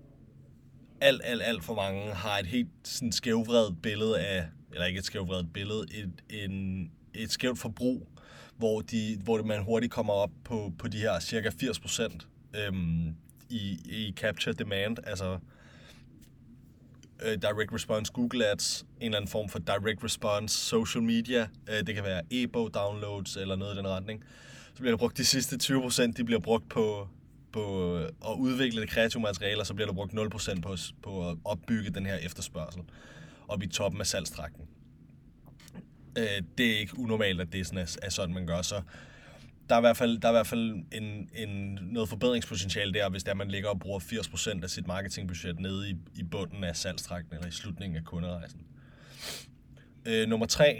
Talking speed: 175 wpm